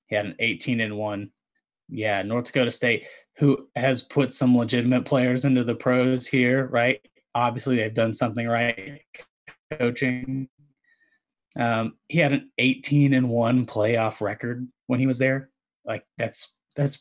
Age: 20-39